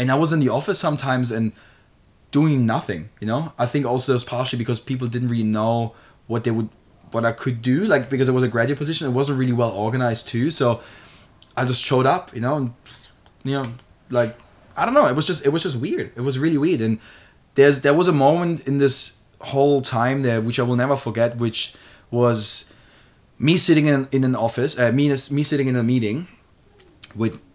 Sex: male